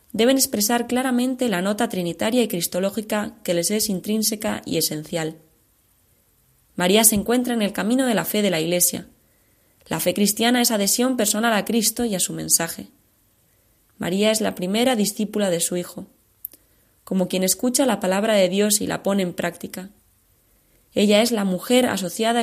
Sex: female